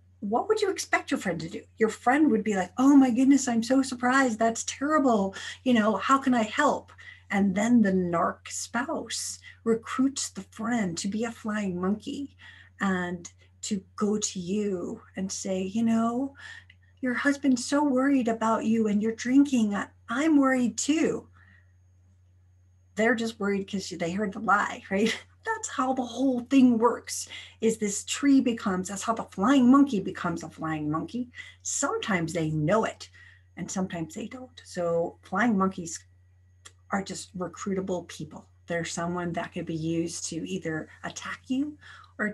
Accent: American